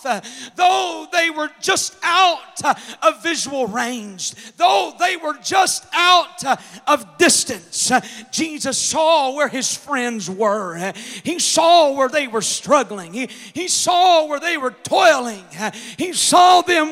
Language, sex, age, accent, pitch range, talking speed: English, male, 40-59, American, 240-335 Hz, 130 wpm